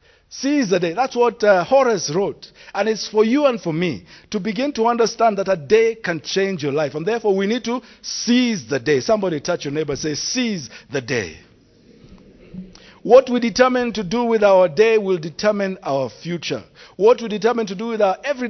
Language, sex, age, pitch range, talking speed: English, male, 50-69, 175-230 Hz, 205 wpm